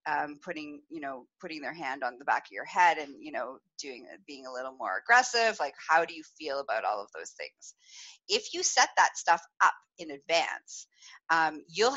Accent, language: American, English